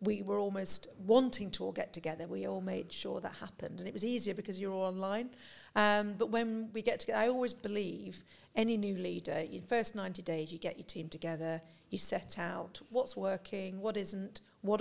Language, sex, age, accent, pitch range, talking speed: English, female, 50-69, British, 190-220 Hz, 205 wpm